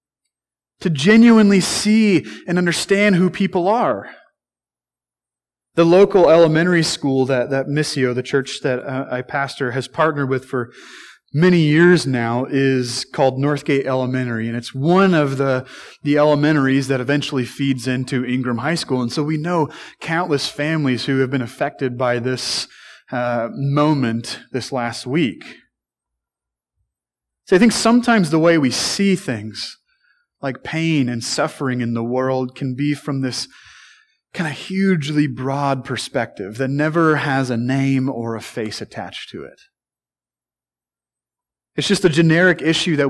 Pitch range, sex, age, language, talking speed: 125-165 Hz, male, 30-49, English, 145 wpm